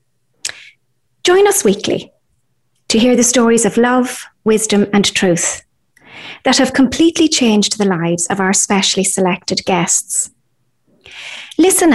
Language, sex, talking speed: English, female, 120 wpm